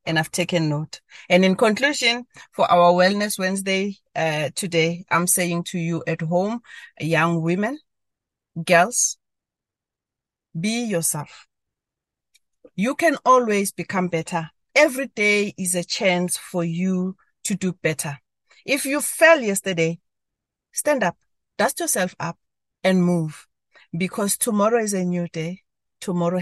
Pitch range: 165-195 Hz